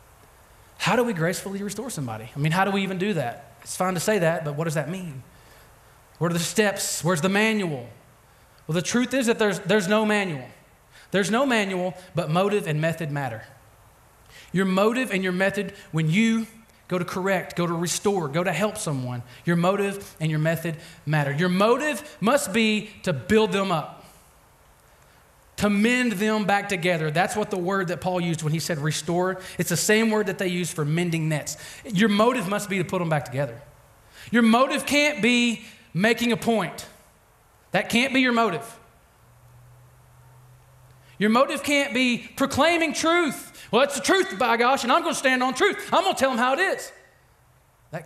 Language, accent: English, American